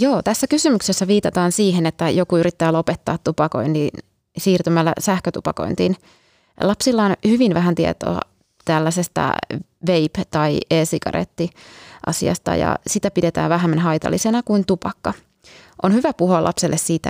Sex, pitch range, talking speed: female, 160-185 Hz, 120 wpm